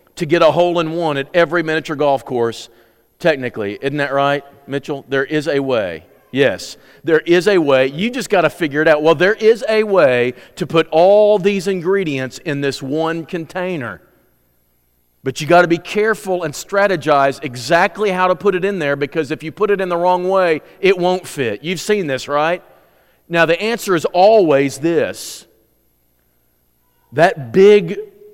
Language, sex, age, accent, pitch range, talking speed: English, male, 40-59, American, 145-190 Hz, 175 wpm